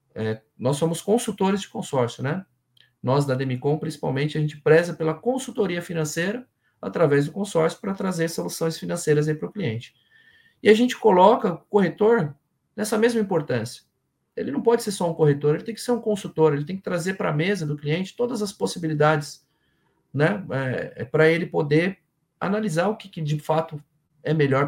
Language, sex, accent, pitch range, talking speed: Portuguese, male, Brazilian, 140-190 Hz, 180 wpm